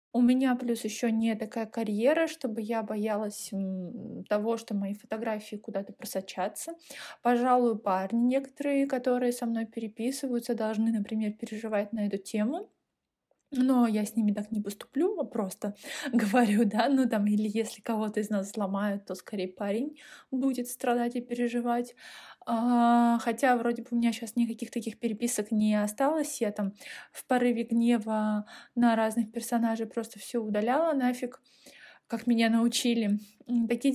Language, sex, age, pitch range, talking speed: Russian, female, 20-39, 220-250 Hz, 145 wpm